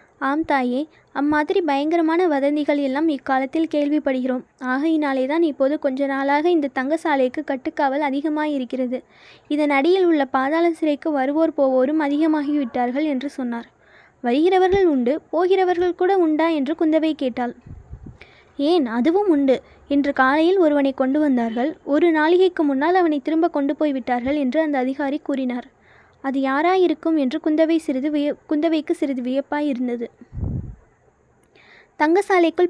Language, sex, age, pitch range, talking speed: Tamil, female, 20-39, 275-330 Hz, 115 wpm